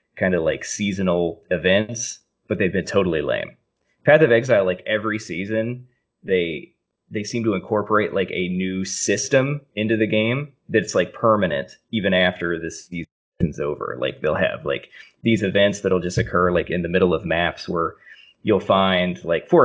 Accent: American